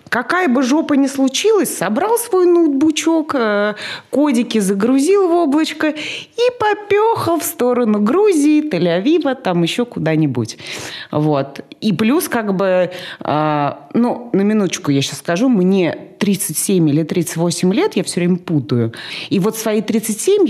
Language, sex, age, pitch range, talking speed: Russian, female, 30-49, 155-250 Hz, 135 wpm